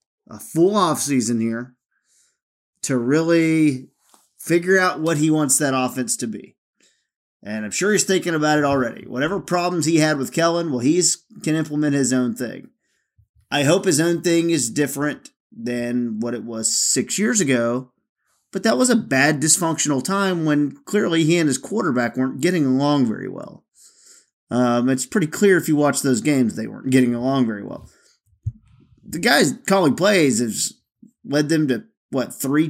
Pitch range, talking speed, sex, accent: 130-180 Hz, 175 wpm, male, American